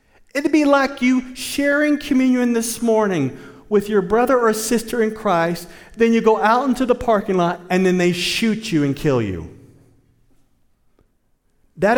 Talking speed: 160 wpm